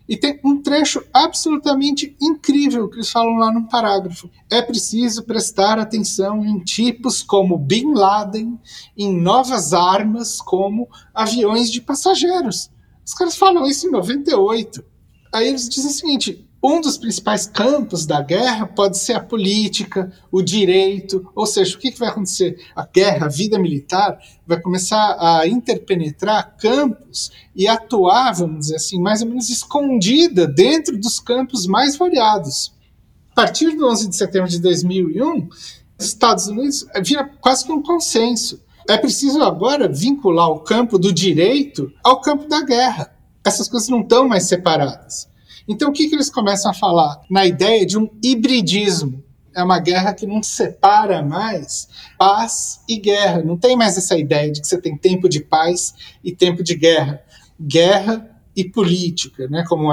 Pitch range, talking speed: 175-240 Hz, 160 wpm